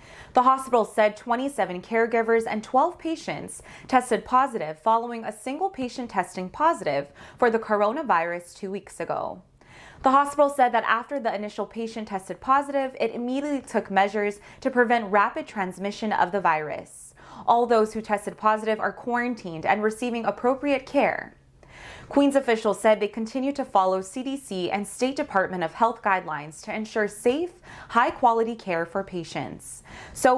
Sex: female